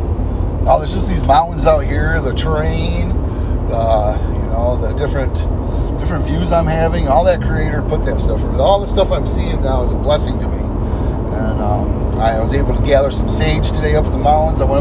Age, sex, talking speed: 30-49, male, 205 wpm